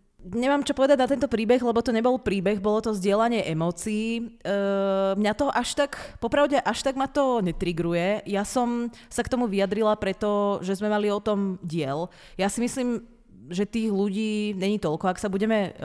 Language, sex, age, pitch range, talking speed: Czech, female, 30-49, 170-210 Hz, 185 wpm